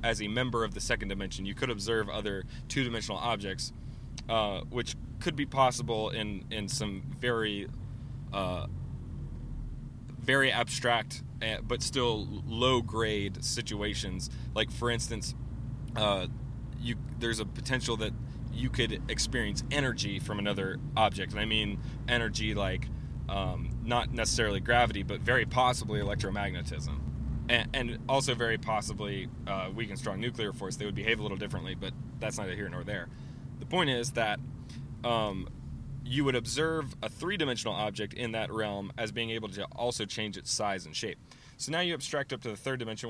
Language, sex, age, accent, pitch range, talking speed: English, male, 20-39, American, 105-130 Hz, 160 wpm